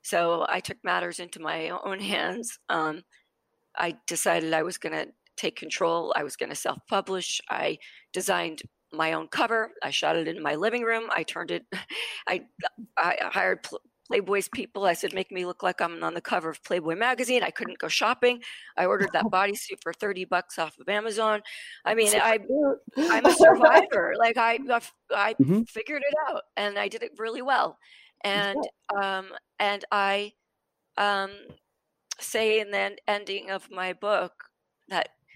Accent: American